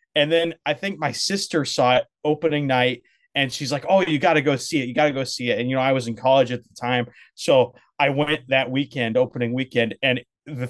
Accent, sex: American, male